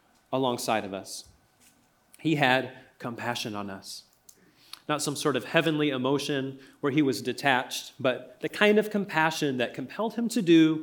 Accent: American